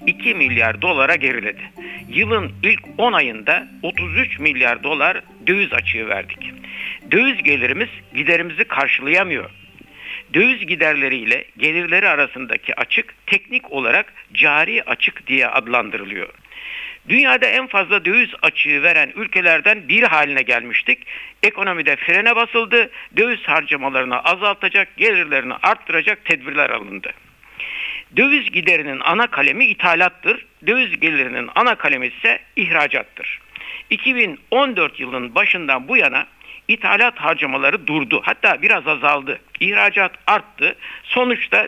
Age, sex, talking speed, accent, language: 60-79, male, 105 wpm, native, Turkish